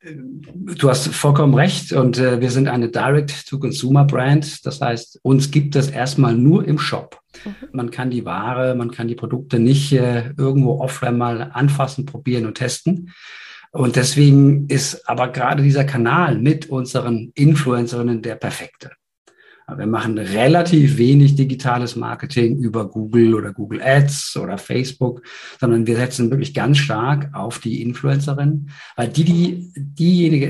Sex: male